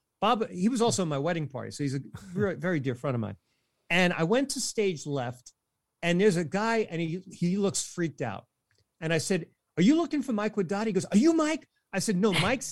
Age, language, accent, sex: 50-69, English, American, male